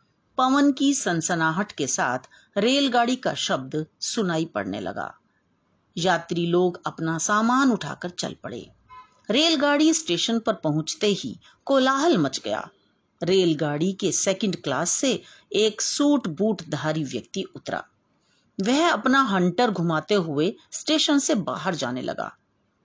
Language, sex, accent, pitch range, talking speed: Hindi, female, native, 170-280 Hz, 125 wpm